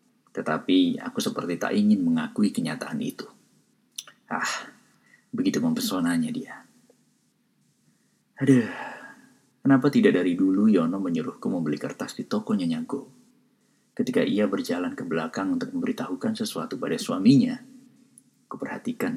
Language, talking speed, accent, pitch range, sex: Indonesian, 110 wpm, native, 230-250 Hz, male